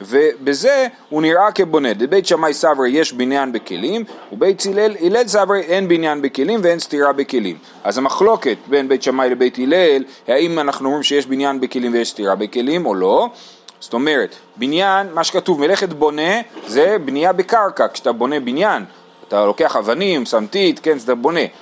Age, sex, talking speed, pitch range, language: 30-49, male, 160 wpm, 125-185 Hz, Hebrew